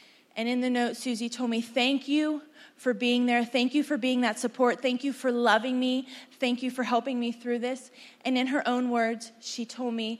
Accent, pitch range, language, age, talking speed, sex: American, 245-290 Hz, English, 20-39, 225 wpm, female